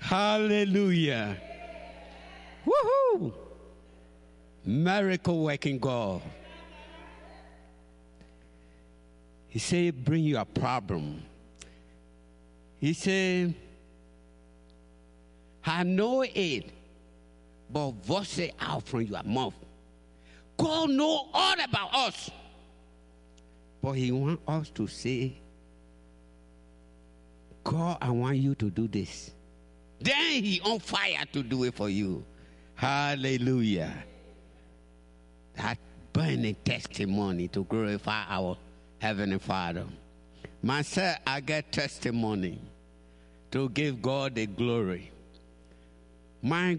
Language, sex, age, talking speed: English, male, 60-79, 90 wpm